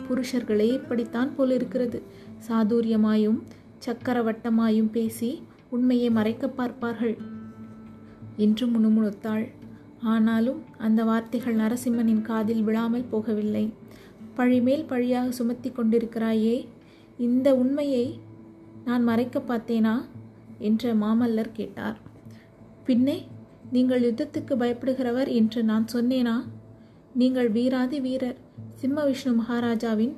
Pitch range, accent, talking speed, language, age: 225-260 Hz, native, 90 wpm, Tamil, 30-49